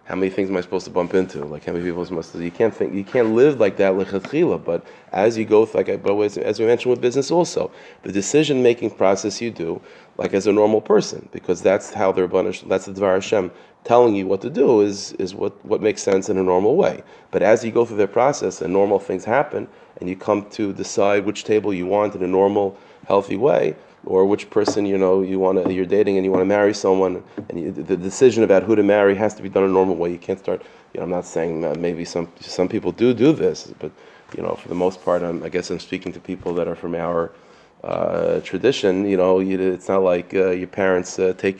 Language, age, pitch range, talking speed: English, 30-49, 90-105 Hz, 250 wpm